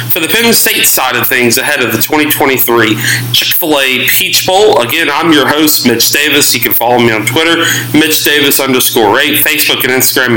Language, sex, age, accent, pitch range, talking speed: English, male, 40-59, American, 125-165 Hz, 185 wpm